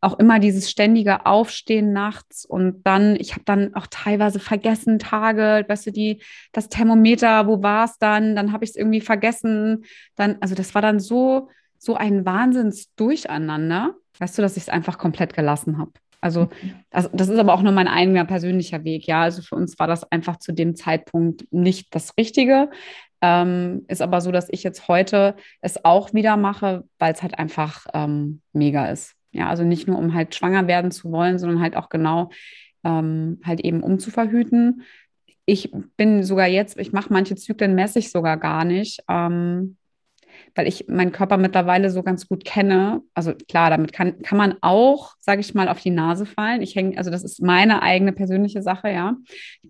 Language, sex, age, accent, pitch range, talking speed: German, female, 20-39, German, 175-210 Hz, 190 wpm